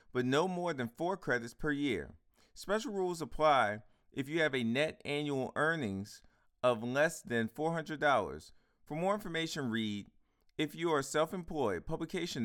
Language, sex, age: English, male, 40-59